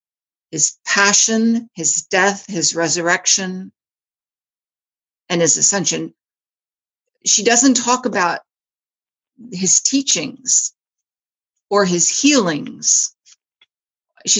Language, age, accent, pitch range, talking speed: English, 50-69, American, 180-225 Hz, 80 wpm